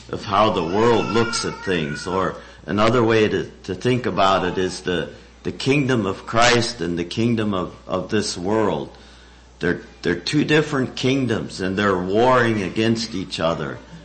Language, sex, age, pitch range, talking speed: English, male, 50-69, 75-115 Hz, 165 wpm